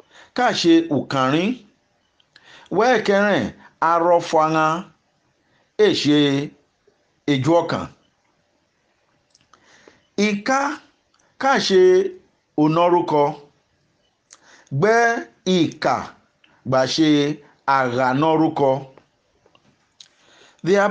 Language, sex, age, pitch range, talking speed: English, male, 50-69, 150-225 Hz, 40 wpm